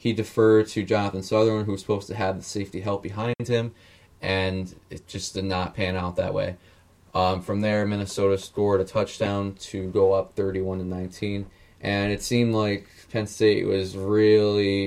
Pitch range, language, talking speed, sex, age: 95-110 Hz, English, 175 wpm, male, 20-39